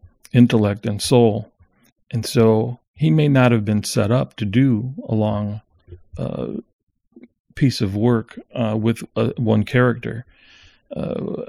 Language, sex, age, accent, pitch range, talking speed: English, male, 40-59, American, 105-125 Hz, 135 wpm